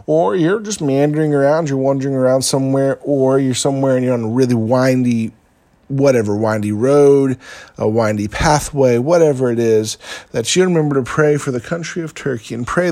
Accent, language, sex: American, English, male